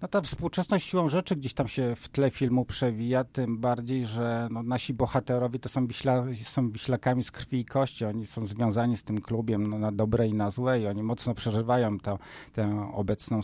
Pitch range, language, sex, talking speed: 105-130 Hz, Polish, male, 185 wpm